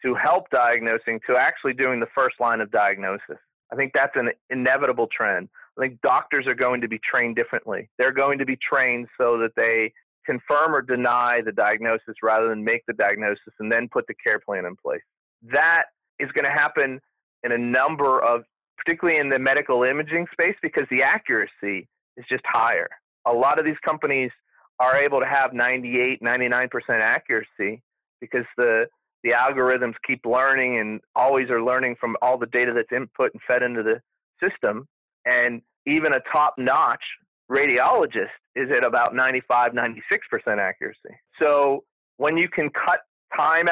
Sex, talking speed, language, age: male, 170 wpm, English, 30-49